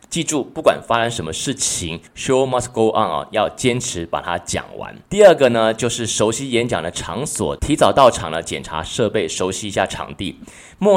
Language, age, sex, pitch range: Chinese, 20-39, male, 95-125 Hz